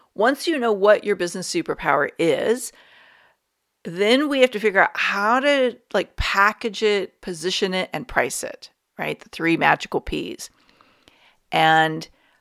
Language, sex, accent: English, female, American